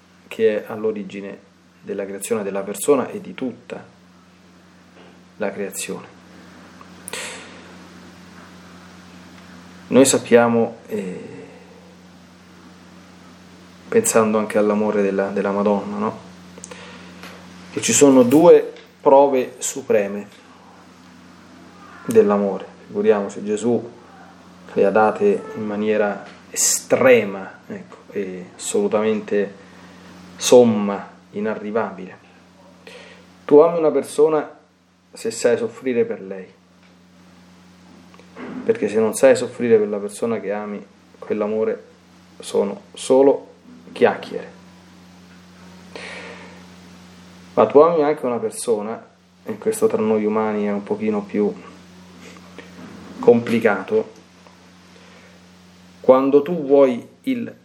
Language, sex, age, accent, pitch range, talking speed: Italian, male, 30-49, native, 90-130 Hz, 90 wpm